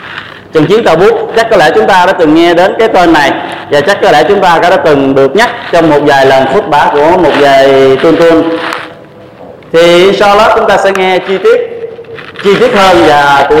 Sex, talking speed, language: male, 220 wpm, Vietnamese